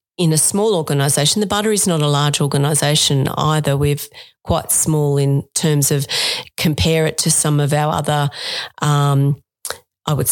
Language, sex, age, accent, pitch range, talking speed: English, female, 40-59, Australian, 150-175 Hz, 165 wpm